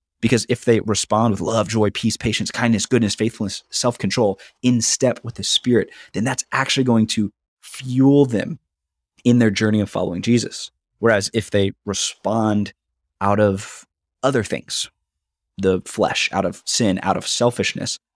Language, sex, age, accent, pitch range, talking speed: English, male, 20-39, American, 95-115 Hz, 155 wpm